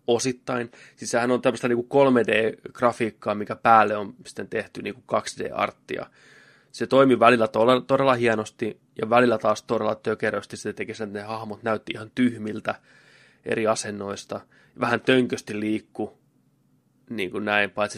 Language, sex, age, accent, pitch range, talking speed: Finnish, male, 20-39, native, 110-125 Hz, 135 wpm